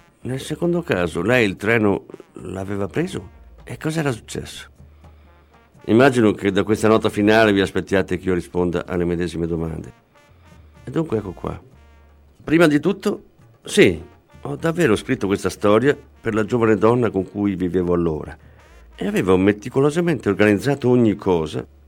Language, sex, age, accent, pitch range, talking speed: Italian, male, 50-69, native, 90-115 Hz, 145 wpm